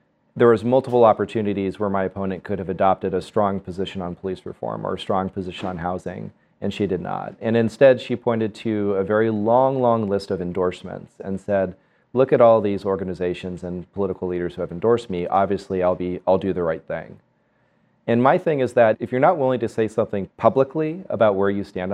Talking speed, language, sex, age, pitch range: 210 wpm, English, male, 30-49, 95-115 Hz